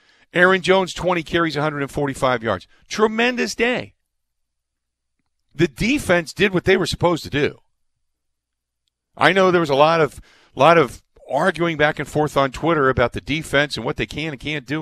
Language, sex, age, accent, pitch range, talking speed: English, male, 50-69, American, 110-165 Hz, 170 wpm